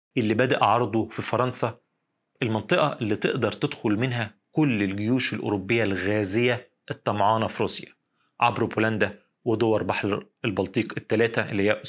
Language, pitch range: Arabic, 105-130 Hz